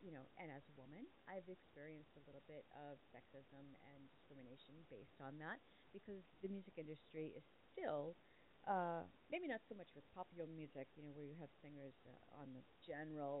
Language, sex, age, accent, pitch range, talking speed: English, female, 40-59, American, 145-190 Hz, 190 wpm